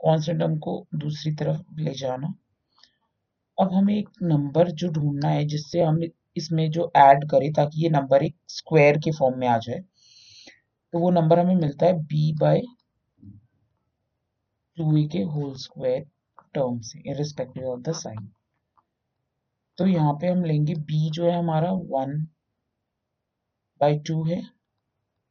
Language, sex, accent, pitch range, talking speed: Hindi, male, native, 115-165 Hz, 90 wpm